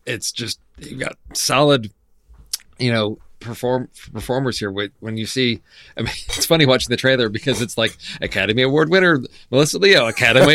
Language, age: English, 40-59